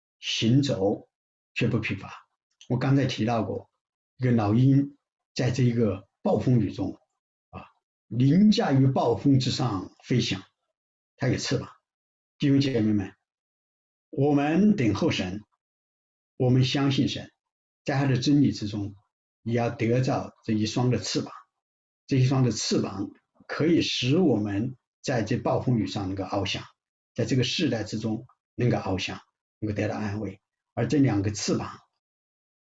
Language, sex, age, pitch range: English, male, 60-79, 105-130 Hz